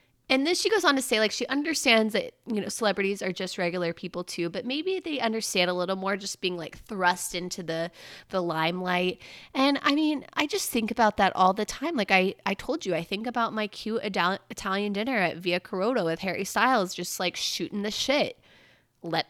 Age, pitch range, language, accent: 20-39, 180-265 Hz, English, American